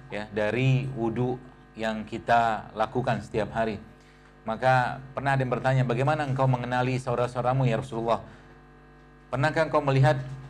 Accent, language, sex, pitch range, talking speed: native, Indonesian, male, 110-130 Hz, 130 wpm